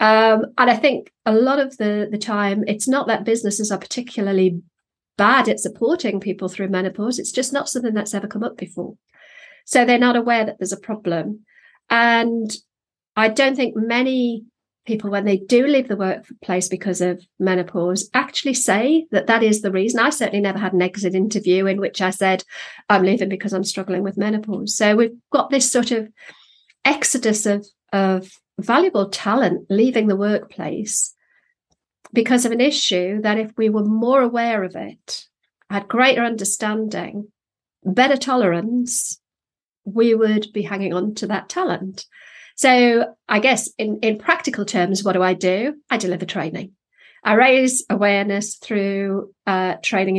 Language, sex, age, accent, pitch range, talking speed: English, female, 40-59, British, 190-235 Hz, 165 wpm